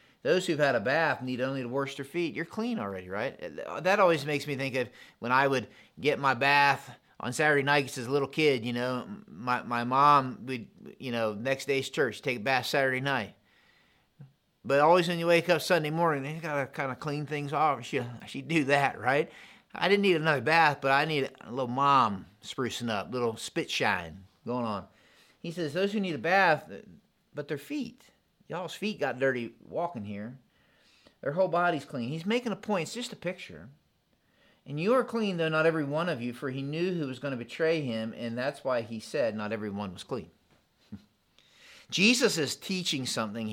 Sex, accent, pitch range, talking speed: male, American, 120-165 Hz, 210 wpm